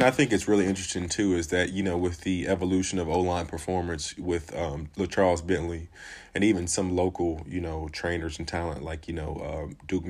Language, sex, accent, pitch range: English, male, American, 80-95 Hz